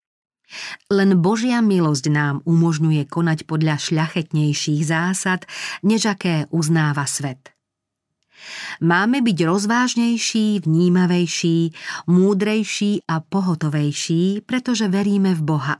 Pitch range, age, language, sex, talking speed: 155-185 Hz, 40-59, Slovak, female, 85 wpm